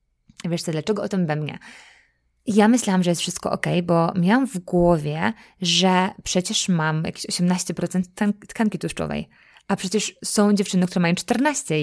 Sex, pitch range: female, 165-200 Hz